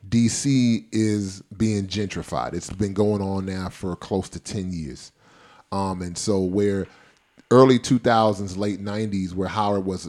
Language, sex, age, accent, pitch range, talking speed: English, male, 30-49, American, 95-120 Hz, 150 wpm